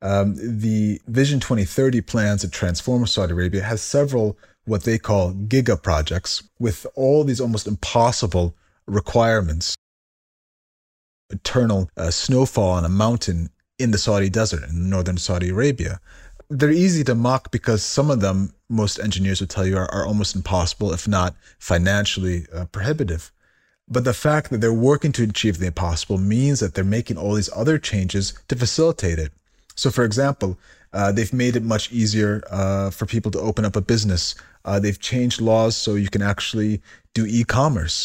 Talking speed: 170 wpm